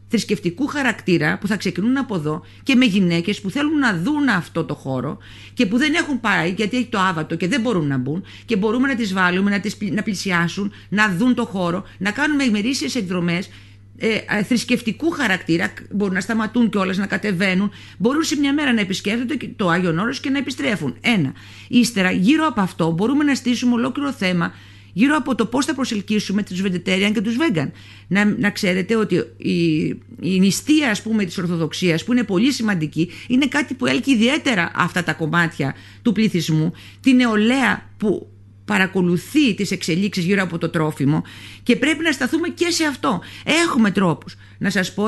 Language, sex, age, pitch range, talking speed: Greek, female, 50-69, 175-245 Hz, 185 wpm